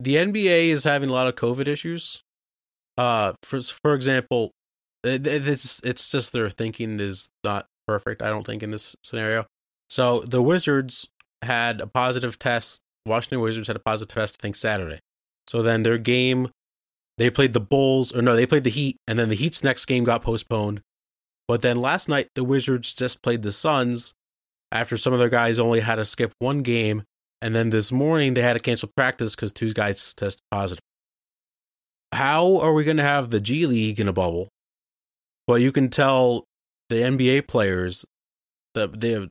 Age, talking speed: 20-39, 190 wpm